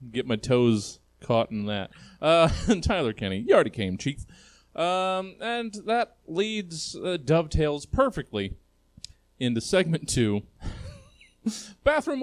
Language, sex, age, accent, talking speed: English, male, 30-49, American, 120 wpm